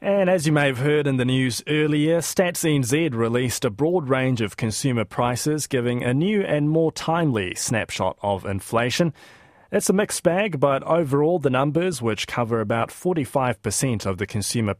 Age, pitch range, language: 20-39, 110-145 Hz, English